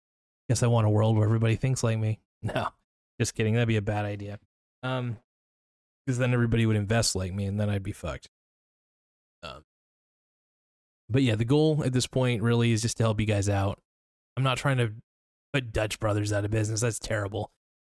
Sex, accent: male, American